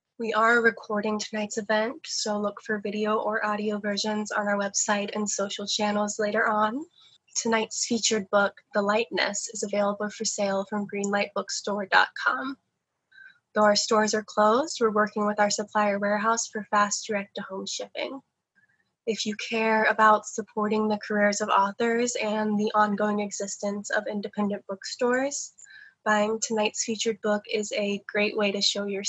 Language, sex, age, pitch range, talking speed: English, female, 10-29, 210-230 Hz, 150 wpm